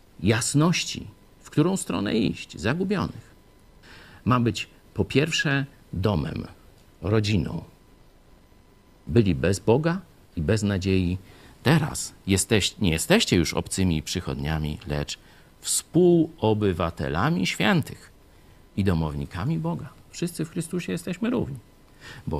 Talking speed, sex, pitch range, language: 95 wpm, male, 85-135 Hz, Polish